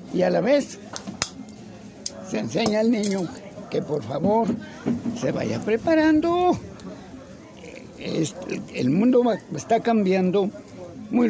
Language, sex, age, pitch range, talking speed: Spanish, male, 60-79, 175-245 Hz, 110 wpm